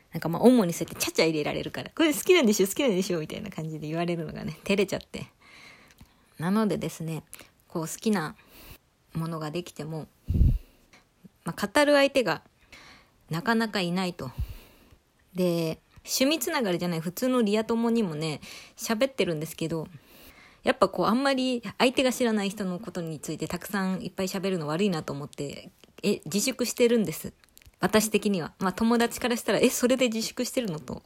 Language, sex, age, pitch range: Japanese, female, 20-39, 160-230 Hz